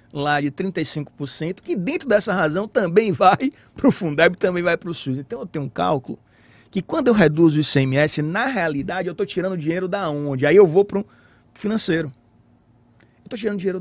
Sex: male